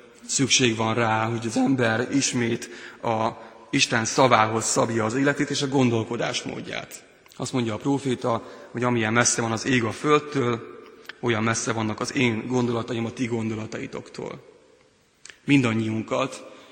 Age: 30-49